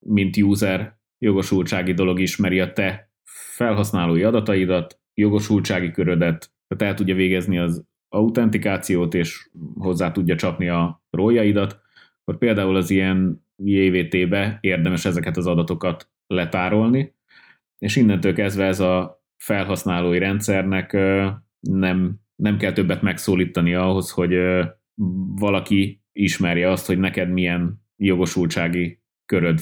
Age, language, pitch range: 30-49, Hungarian, 85-100 Hz